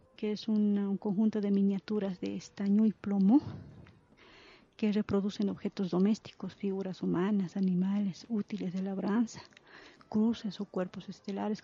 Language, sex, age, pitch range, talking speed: Spanish, female, 40-59, 195-220 Hz, 130 wpm